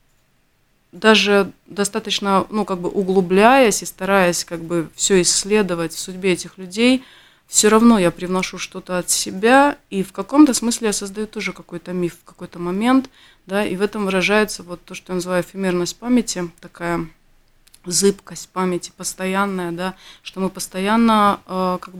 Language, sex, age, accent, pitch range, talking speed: Russian, female, 20-39, native, 175-210 Hz, 155 wpm